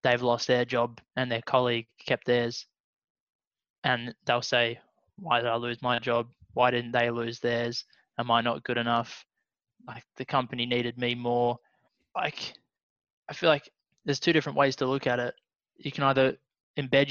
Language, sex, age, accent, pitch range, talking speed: English, male, 20-39, Australian, 120-130 Hz, 175 wpm